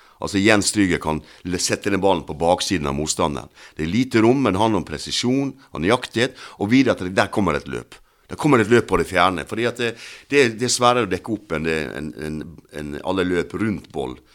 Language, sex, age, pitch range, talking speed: Danish, male, 60-79, 80-120 Hz, 220 wpm